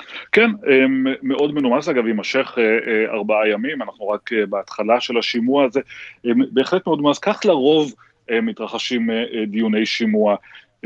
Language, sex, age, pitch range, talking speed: Hebrew, male, 30-49, 105-125 Hz, 115 wpm